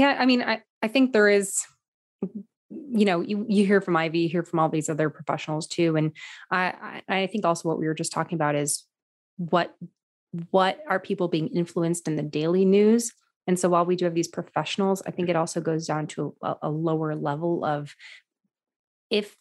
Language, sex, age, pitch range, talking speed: English, female, 20-39, 155-185 Hz, 205 wpm